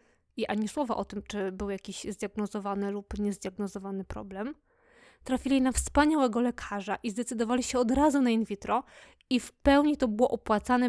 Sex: female